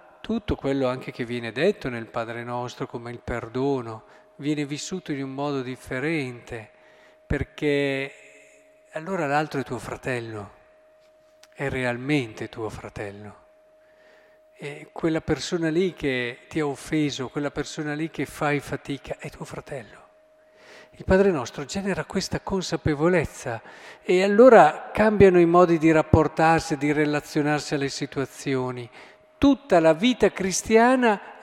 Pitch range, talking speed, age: 140-210 Hz, 125 wpm, 50-69